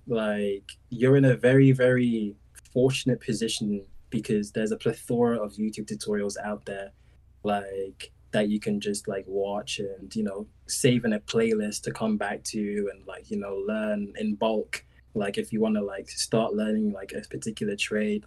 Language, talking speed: English, 175 wpm